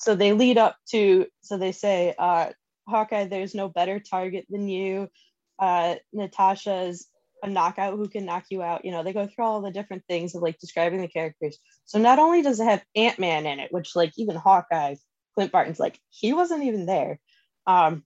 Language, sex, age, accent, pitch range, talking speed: English, female, 10-29, American, 180-225 Hz, 200 wpm